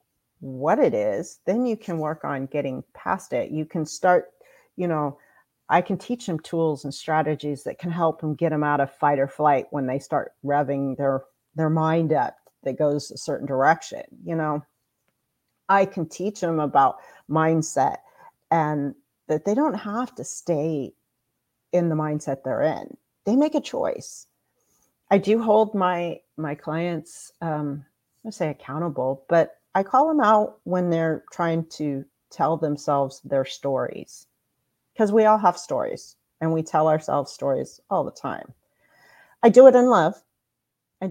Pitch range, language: 145-195 Hz, English